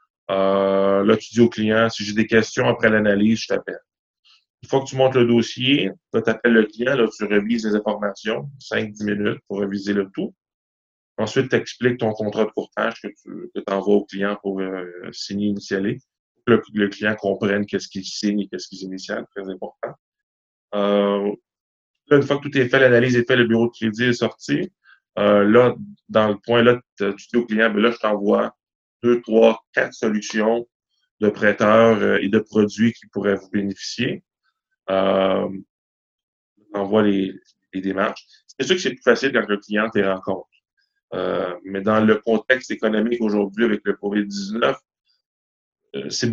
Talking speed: 185 wpm